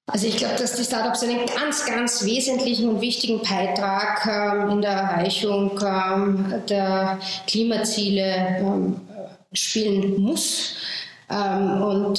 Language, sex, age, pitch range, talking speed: German, female, 20-39, 195-215 Hz, 125 wpm